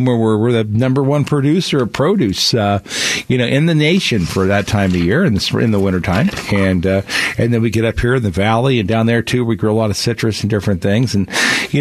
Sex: male